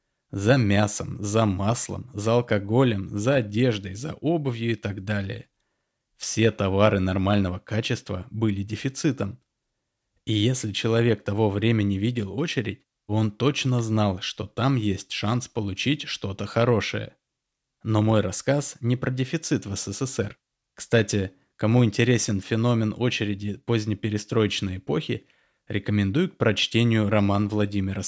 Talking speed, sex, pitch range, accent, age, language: 120 wpm, male, 100-125 Hz, native, 20-39, Russian